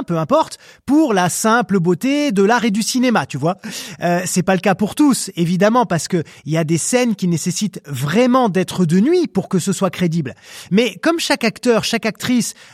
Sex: male